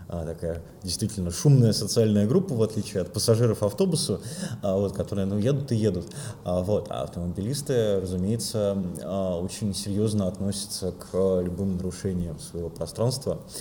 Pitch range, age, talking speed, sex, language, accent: 95-120 Hz, 20-39, 125 wpm, male, Russian, native